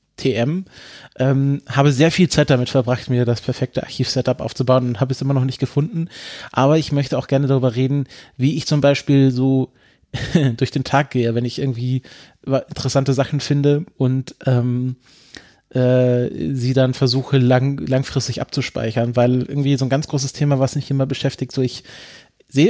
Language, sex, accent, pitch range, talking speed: German, male, German, 125-140 Hz, 170 wpm